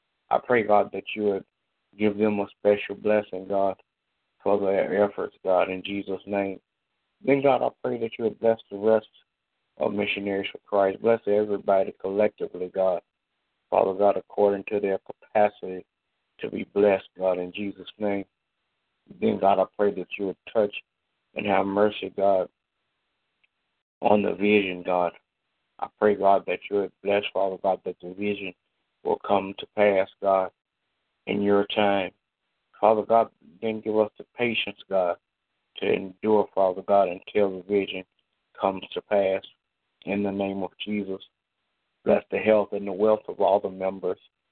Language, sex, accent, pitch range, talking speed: English, male, American, 95-105 Hz, 160 wpm